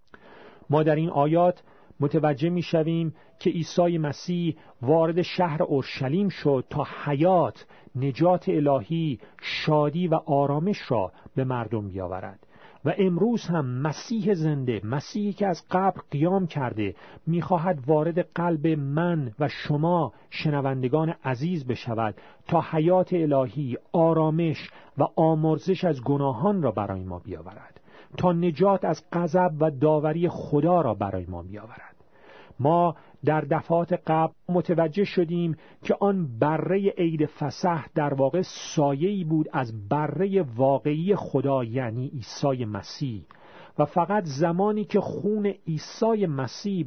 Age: 40-59